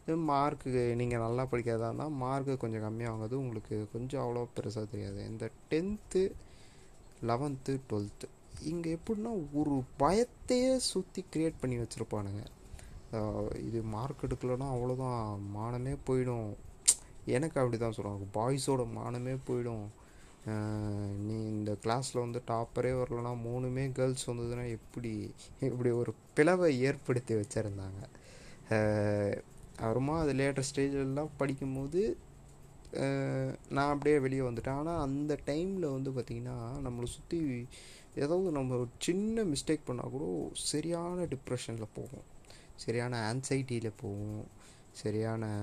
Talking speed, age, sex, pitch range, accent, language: 105 wpm, 30-49, male, 110-140 Hz, native, Tamil